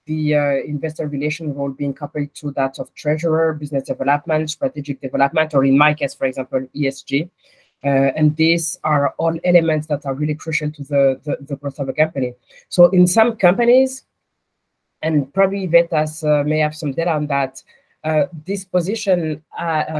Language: English